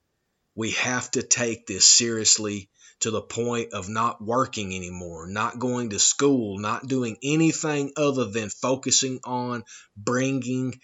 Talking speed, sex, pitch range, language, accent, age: 140 wpm, male, 105-125 Hz, English, American, 30-49